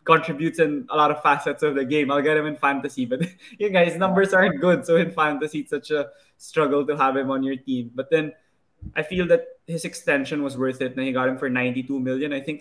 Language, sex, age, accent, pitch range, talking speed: Filipino, male, 20-39, native, 125-150 Hz, 245 wpm